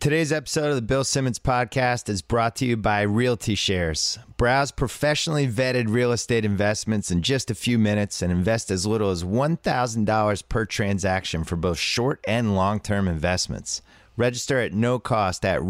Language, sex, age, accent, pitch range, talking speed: English, male, 30-49, American, 90-120 Hz, 165 wpm